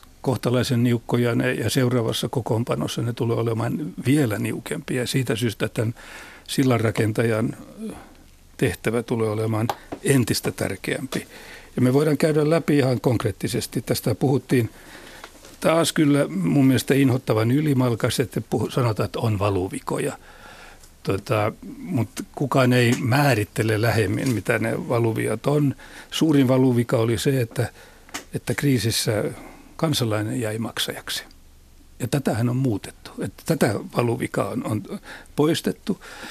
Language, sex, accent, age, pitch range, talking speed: Finnish, male, native, 60-79, 115-135 Hz, 115 wpm